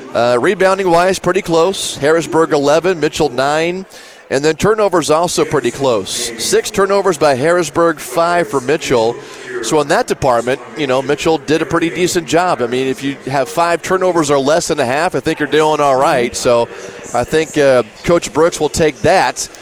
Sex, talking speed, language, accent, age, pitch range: male, 185 wpm, English, American, 30-49, 140-175 Hz